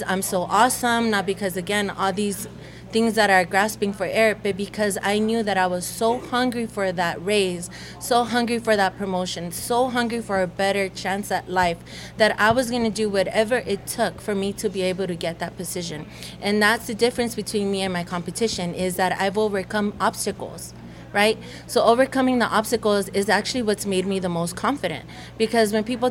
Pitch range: 190-220 Hz